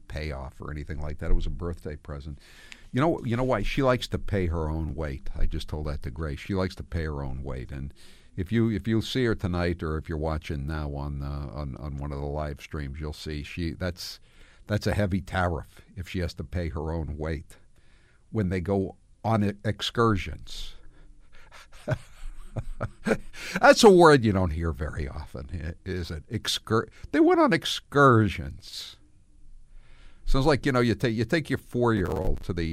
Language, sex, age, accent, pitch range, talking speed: English, male, 60-79, American, 80-120 Hz, 195 wpm